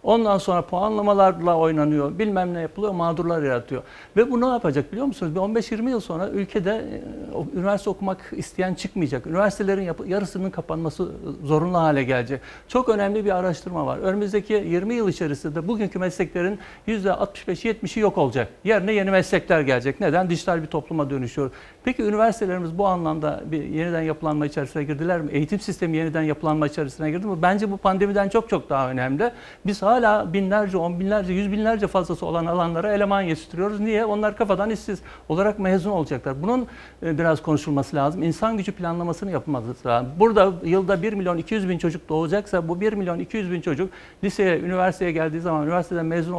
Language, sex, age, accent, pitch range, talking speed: Turkish, male, 60-79, native, 155-200 Hz, 160 wpm